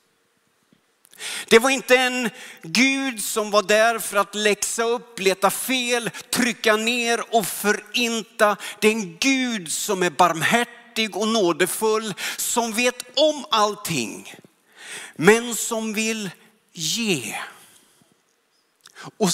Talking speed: 110 wpm